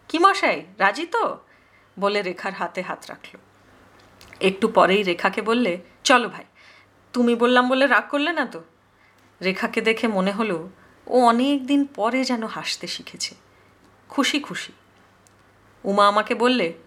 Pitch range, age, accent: 190-295 Hz, 30-49, native